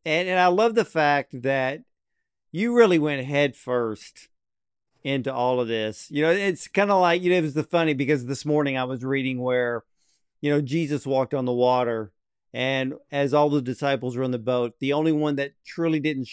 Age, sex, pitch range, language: 50-69, male, 130-165 Hz, English